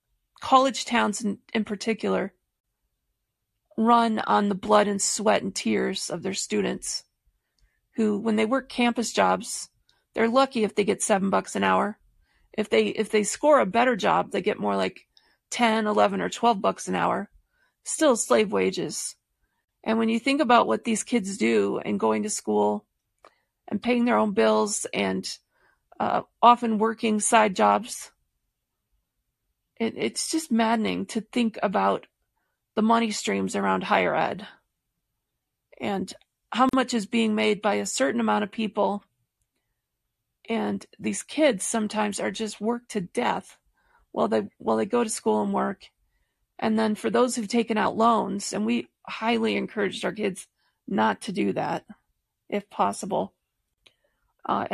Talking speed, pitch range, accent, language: 155 wpm, 200-230 Hz, American, English